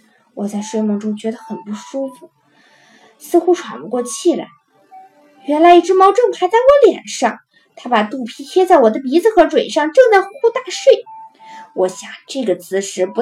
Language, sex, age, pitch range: Chinese, female, 20-39, 215-350 Hz